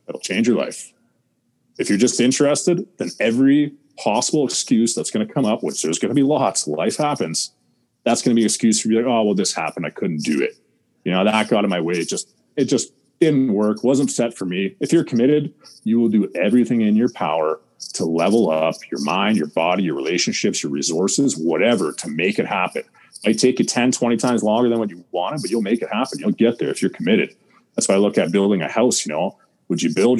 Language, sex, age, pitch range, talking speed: English, male, 30-49, 105-135 Hz, 240 wpm